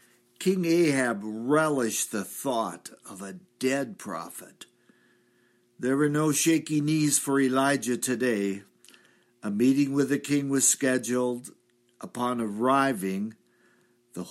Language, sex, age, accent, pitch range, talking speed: English, male, 60-79, American, 110-135 Hz, 115 wpm